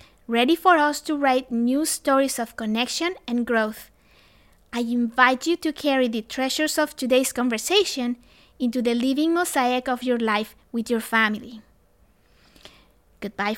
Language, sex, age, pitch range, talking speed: English, female, 20-39, 235-285 Hz, 140 wpm